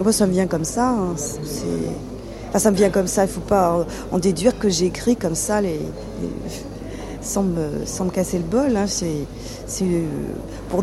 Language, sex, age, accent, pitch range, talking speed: French, female, 40-59, French, 165-215 Hz, 205 wpm